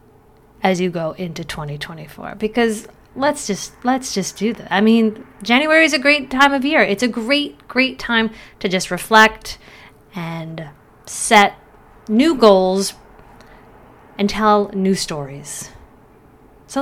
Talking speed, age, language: 135 wpm, 30-49, English